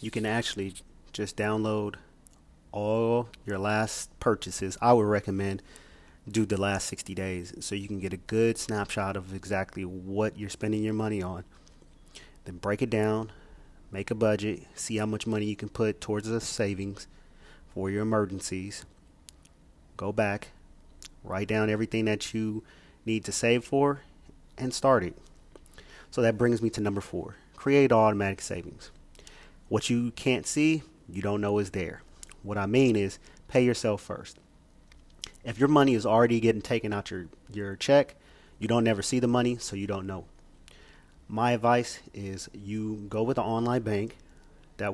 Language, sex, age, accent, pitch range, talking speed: English, male, 30-49, American, 95-115 Hz, 165 wpm